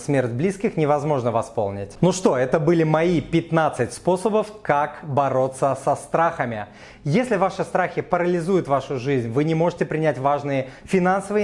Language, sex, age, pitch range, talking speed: Russian, male, 30-49, 130-170 Hz, 140 wpm